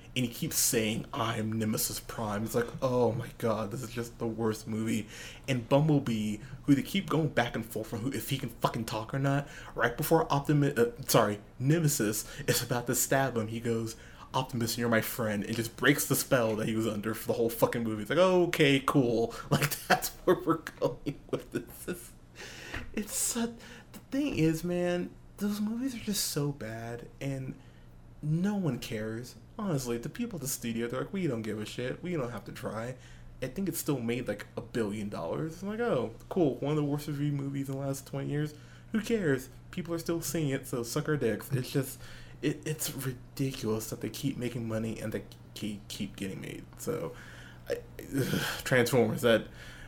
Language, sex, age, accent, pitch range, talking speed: English, male, 20-39, American, 110-150 Hz, 200 wpm